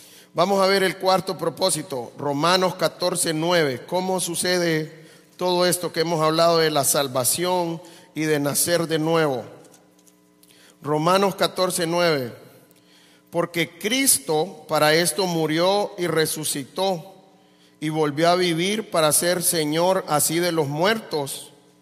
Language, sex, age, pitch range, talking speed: English, male, 40-59, 135-185 Hz, 120 wpm